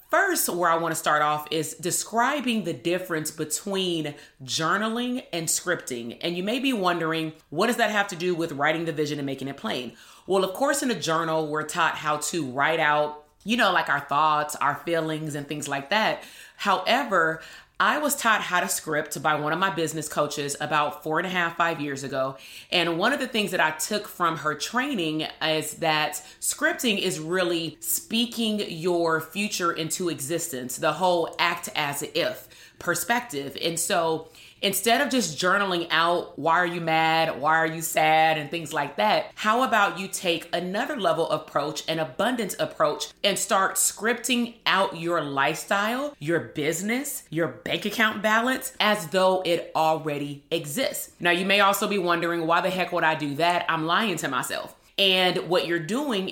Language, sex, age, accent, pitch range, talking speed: English, female, 30-49, American, 155-200 Hz, 185 wpm